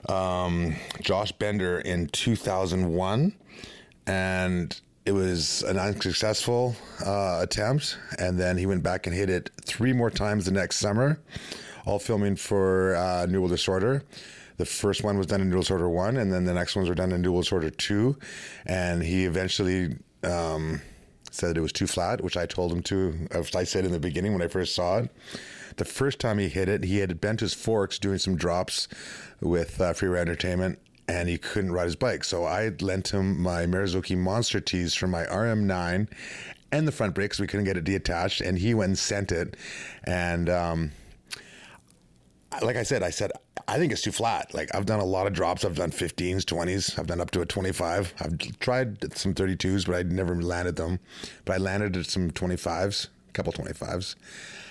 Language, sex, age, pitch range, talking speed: English, male, 30-49, 90-100 Hz, 190 wpm